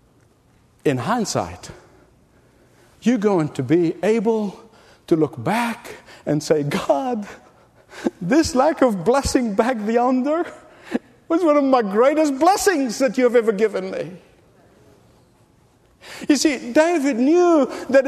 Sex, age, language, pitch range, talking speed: male, 50-69, English, 210-290 Hz, 120 wpm